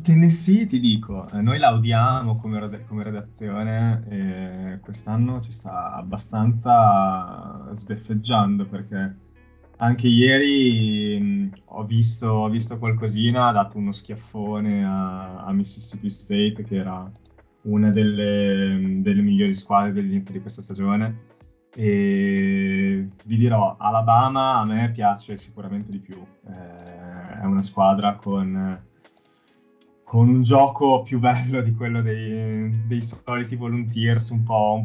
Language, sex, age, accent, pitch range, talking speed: Italian, male, 20-39, native, 100-115 Hz, 120 wpm